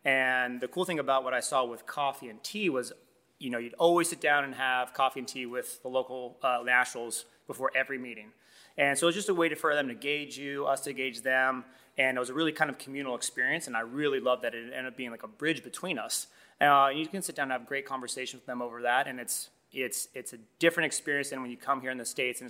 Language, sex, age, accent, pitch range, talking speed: English, male, 30-49, American, 125-140 Hz, 270 wpm